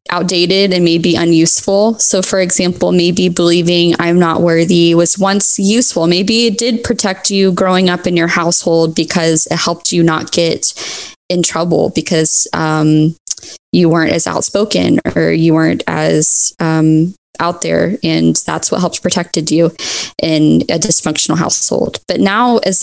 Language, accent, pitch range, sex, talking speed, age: English, American, 165-200 Hz, female, 155 wpm, 20-39